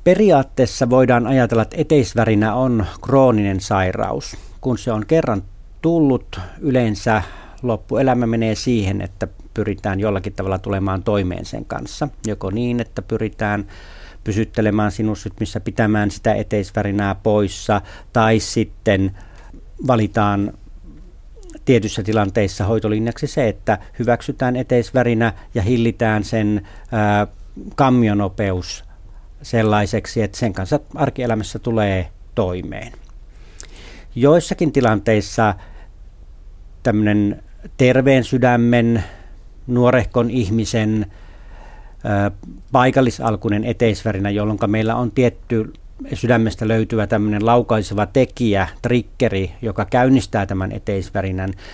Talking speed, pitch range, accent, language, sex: 90 wpm, 95-120 Hz, native, Finnish, male